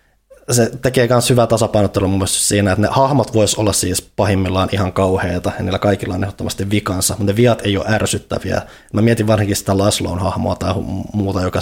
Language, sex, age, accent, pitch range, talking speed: Finnish, male, 20-39, native, 95-110 Hz, 185 wpm